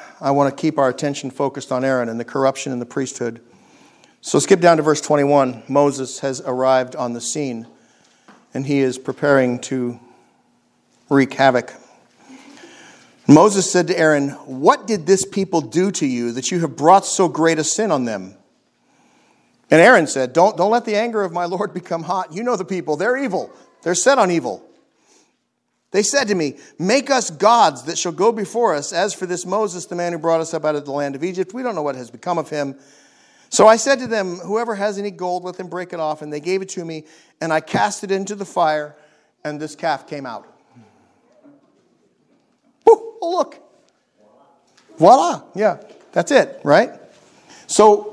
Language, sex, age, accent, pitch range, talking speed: English, male, 50-69, American, 140-205 Hz, 195 wpm